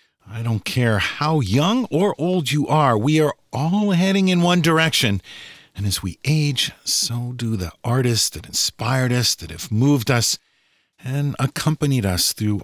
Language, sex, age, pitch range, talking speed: English, male, 50-69, 110-175 Hz, 165 wpm